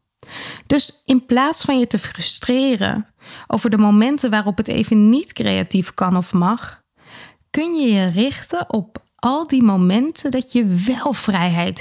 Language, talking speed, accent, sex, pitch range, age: Dutch, 150 wpm, Dutch, female, 200-260 Hz, 20-39